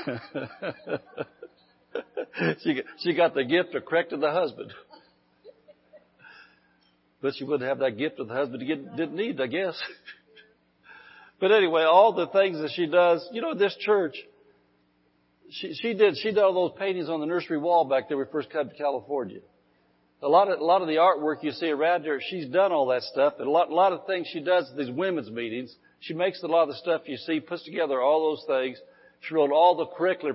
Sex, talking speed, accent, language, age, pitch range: male, 200 wpm, American, English, 60-79, 130-175 Hz